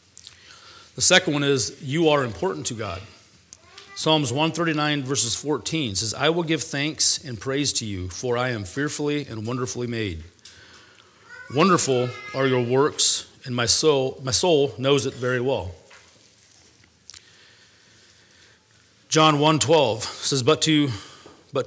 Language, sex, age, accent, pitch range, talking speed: English, male, 40-59, American, 110-140 Hz, 130 wpm